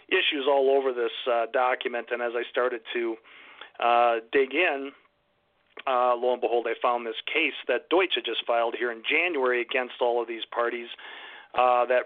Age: 40-59